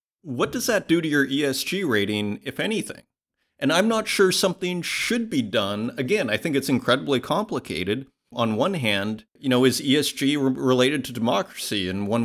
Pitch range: 100-135 Hz